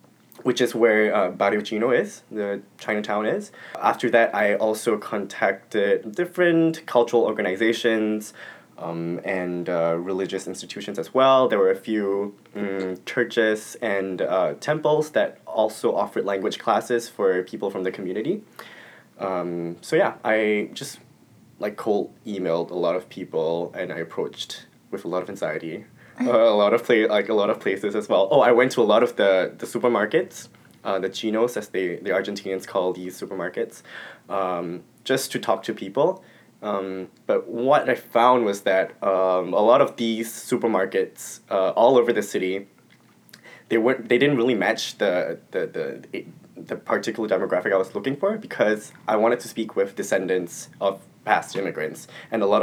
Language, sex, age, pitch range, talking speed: English, male, 20-39, 95-120 Hz, 170 wpm